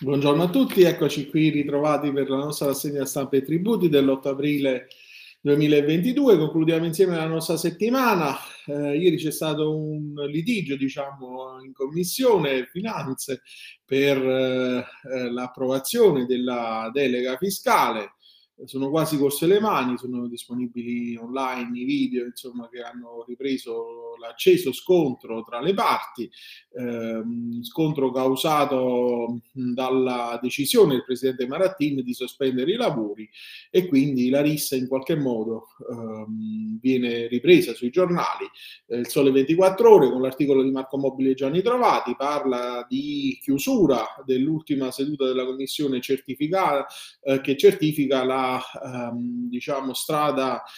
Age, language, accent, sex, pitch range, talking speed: 30-49, Italian, native, male, 125-155 Hz, 130 wpm